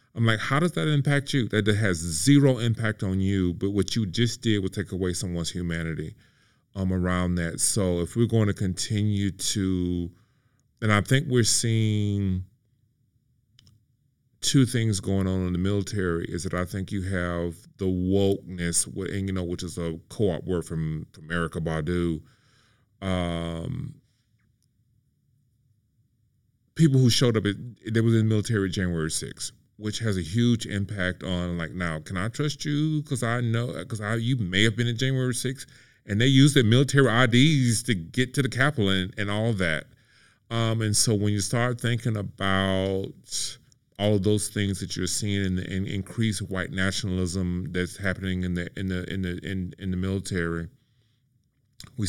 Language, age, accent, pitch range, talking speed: English, 30-49, American, 90-120 Hz, 175 wpm